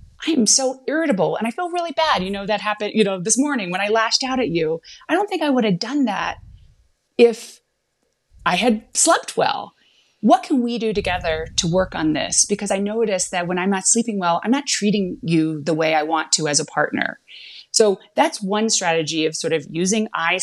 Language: English